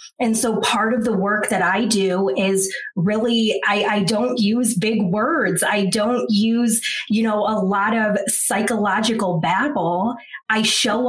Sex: female